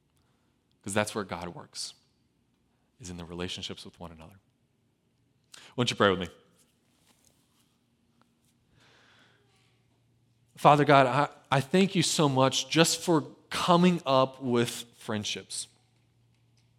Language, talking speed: English, 115 wpm